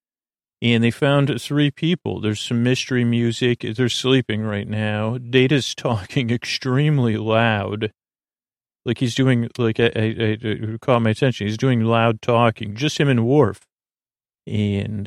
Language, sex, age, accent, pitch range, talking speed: English, male, 40-59, American, 110-125 Hz, 135 wpm